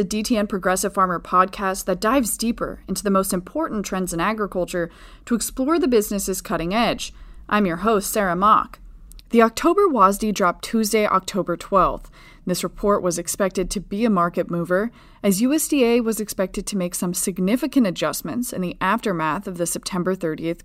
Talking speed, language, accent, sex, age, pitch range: 170 wpm, English, American, female, 30-49, 180-225 Hz